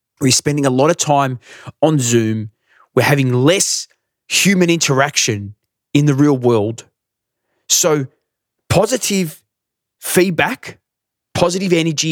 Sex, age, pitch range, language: male, 20-39, 130-185 Hz, English